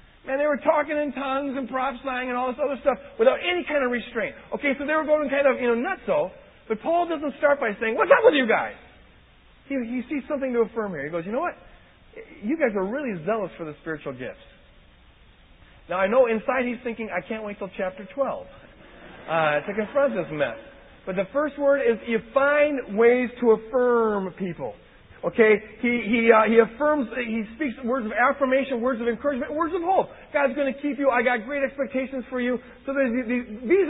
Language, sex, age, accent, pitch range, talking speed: English, male, 40-59, American, 220-275 Hz, 215 wpm